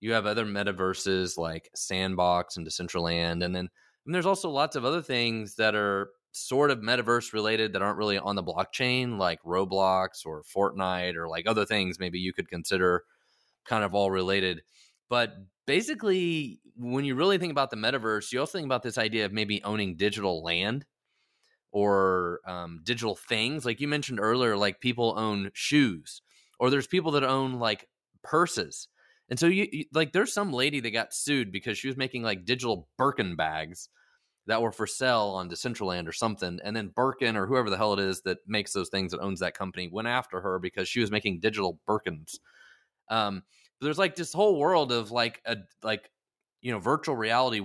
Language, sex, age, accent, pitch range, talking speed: English, male, 20-39, American, 95-125 Hz, 190 wpm